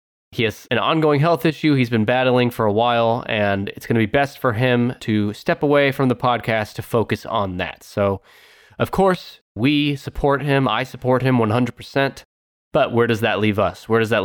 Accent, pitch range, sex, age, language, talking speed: American, 115-145 Hz, male, 20-39, English, 205 wpm